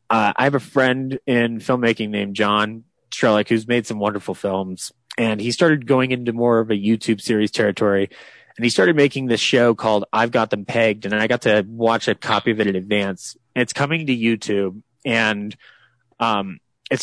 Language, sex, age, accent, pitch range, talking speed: English, male, 20-39, American, 105-130 Hz, 200 wpm